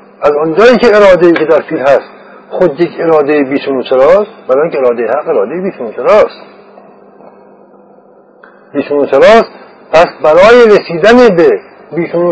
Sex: male